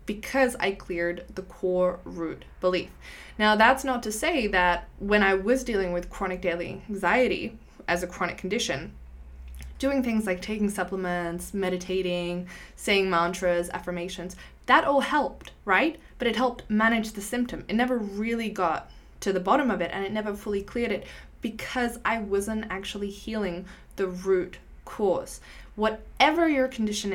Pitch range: 180-215 Hz